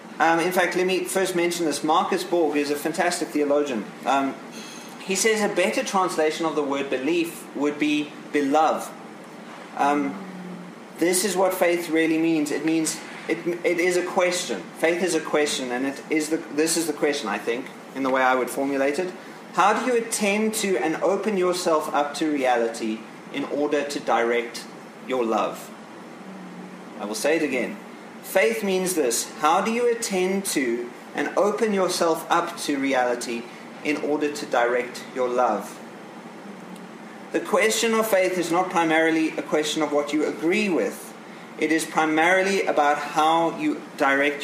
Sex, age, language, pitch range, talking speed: male, 30-49, English, 145-185 Hz, 170 wpm